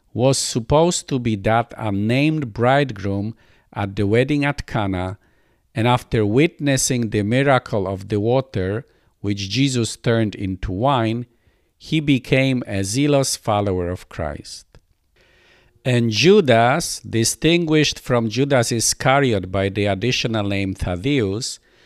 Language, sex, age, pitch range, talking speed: English, male, 50-69, 100-130 Hz, 120 wpm